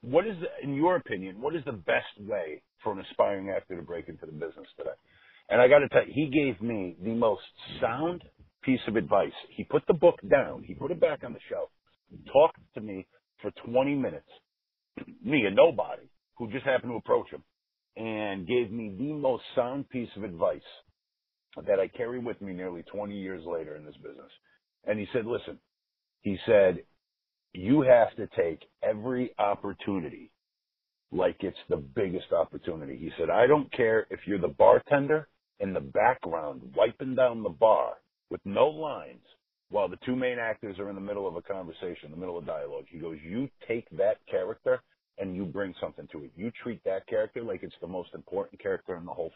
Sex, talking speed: male, 195 wpm